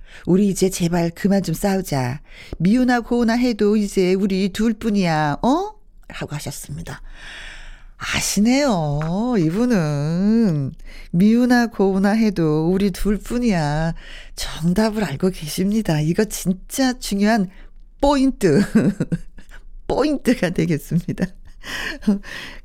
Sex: female